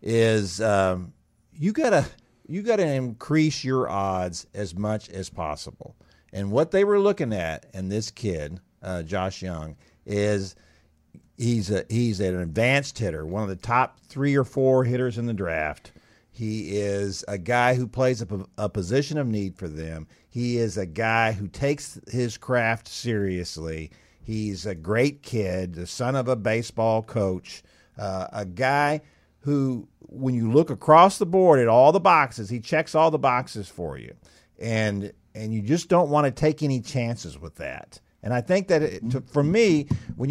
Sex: male